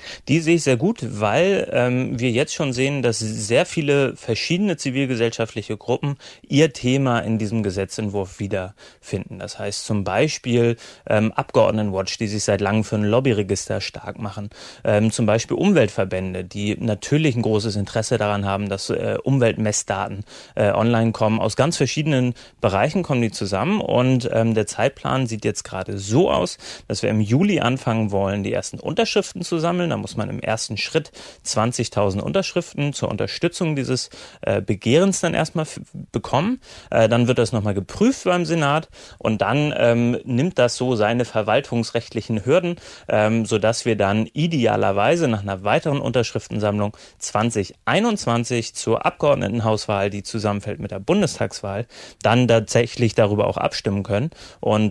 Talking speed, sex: 150 wpm, male